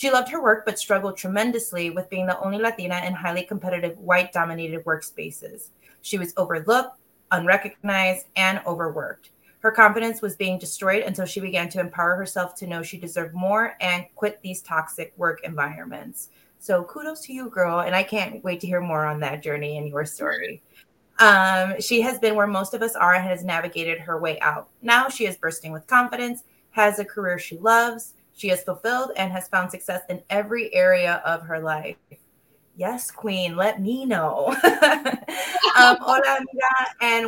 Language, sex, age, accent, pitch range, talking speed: English, female, 30-49, American, 175-220 Hz, 175 wpm